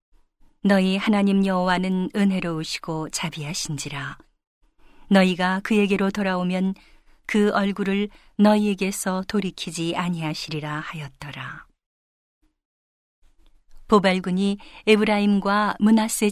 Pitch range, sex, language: 170-205 Hz, female, Korean